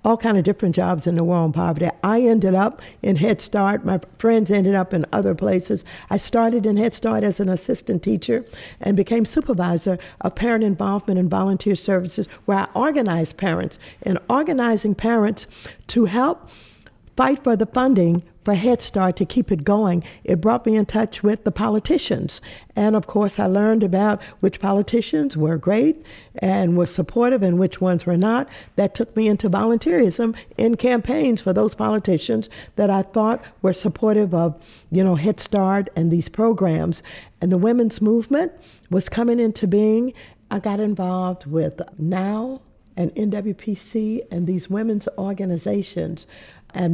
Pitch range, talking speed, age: 185-230 Hz, 165 wpm, 50-69